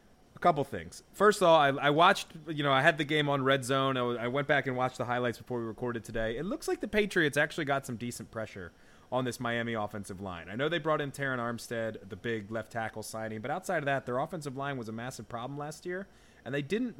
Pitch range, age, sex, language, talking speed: 120-165 Hz, 20-39, male, English, 260 wpm